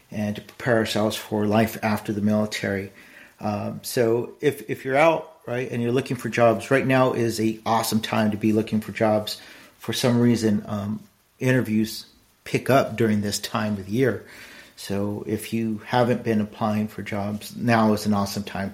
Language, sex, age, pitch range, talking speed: English, male, 50-69, 105-120 Hz, 185 wpm